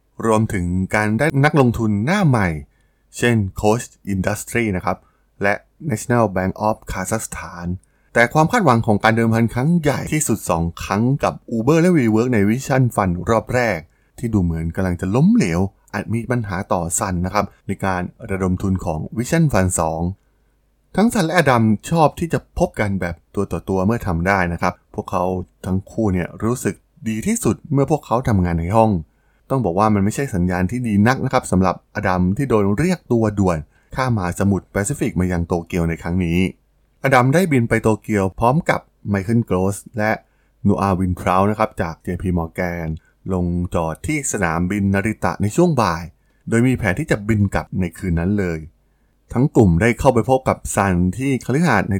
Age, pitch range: 20-39, 90-120 Hz